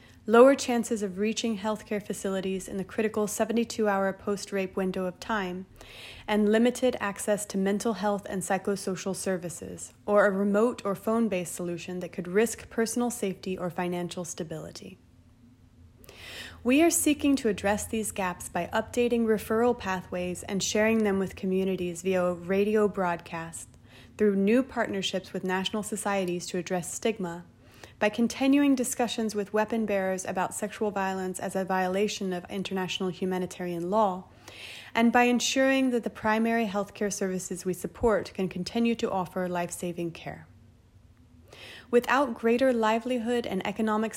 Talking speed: 140 wpm